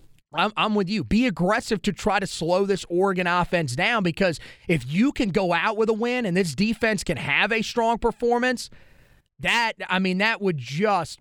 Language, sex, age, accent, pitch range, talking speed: English, male, 30-49, American, 155-205 Hz, 200 wpm